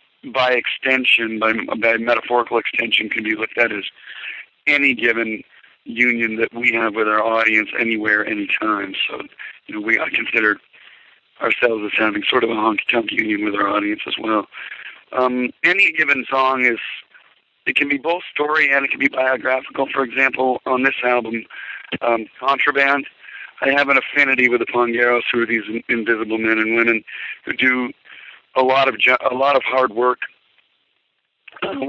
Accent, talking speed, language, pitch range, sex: American, 170 wpm, English, 115-135 Hz, male